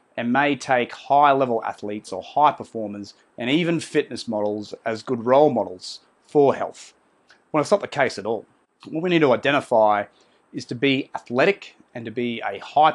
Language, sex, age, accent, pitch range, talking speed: English, male, 30-49, Australian, 120-155 Hz, 185 wpm